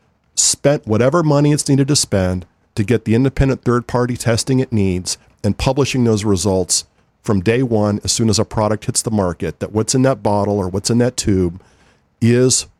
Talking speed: 190 wpm